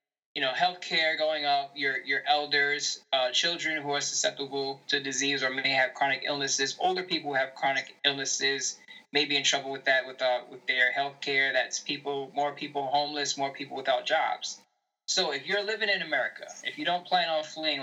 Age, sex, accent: 10-29, male, American